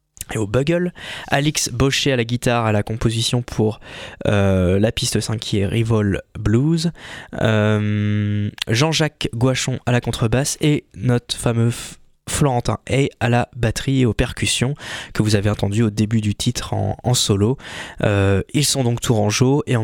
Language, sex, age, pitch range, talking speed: French, male, 20-39, 105-130 Hz, 170 wpm